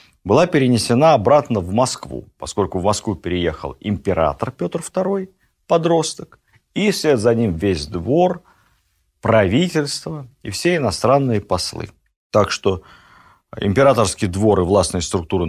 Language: Russian